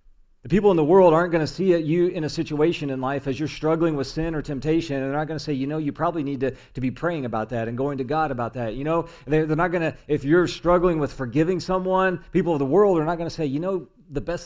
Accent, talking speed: American, 285 wpm